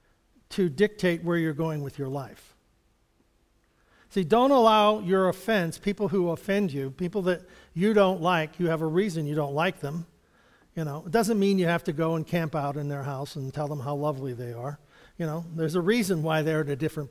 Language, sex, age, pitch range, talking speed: English, male, 50-69, 175-235 Hz, 215 wpm